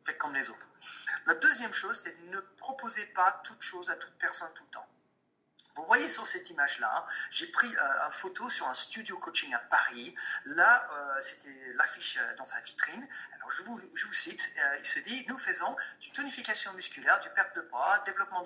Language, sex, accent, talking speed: French, male, French, 200 wpm